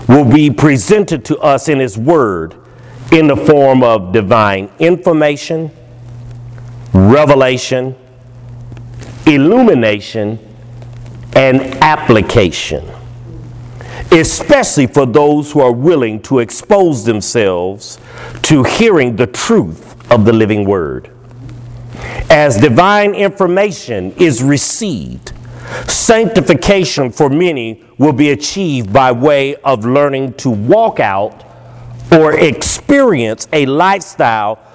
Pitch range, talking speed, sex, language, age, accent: 120-150 Hz, 100 wpm, male, English, 50-69, American